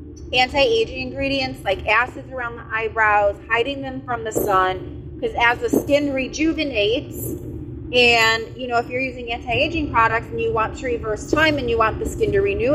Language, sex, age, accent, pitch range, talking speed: English, female, 30-49, American, 210-305 Hz, 180 wpm